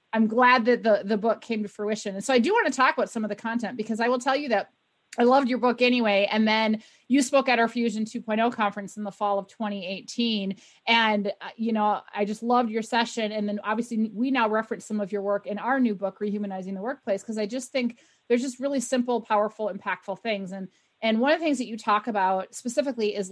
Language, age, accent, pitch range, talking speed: English, 30-49, American, 200-240 Hz, 245 wpm